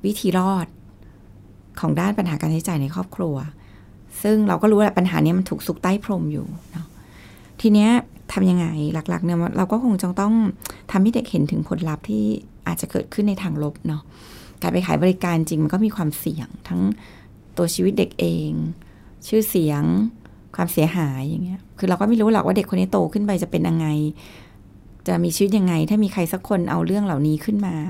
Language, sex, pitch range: Thai, female, 150-200 Hz